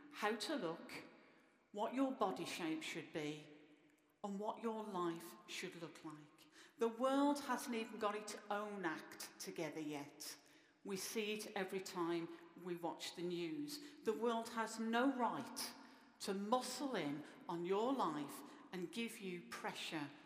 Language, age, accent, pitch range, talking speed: English, 50-69, British, 170-270 Hz, 150 wpm